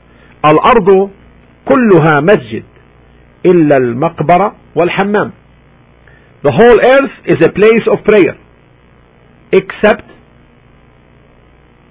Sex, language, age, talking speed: male, English, 50-69, 75 wpm